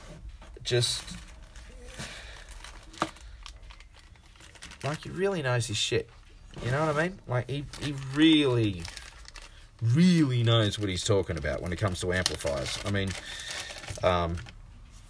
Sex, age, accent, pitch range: male, 30-49, Australian, 95-120 Hz